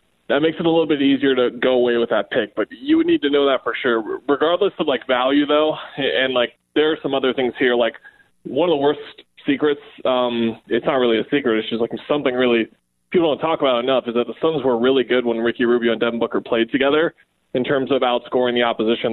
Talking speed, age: 245 wpm, 20-39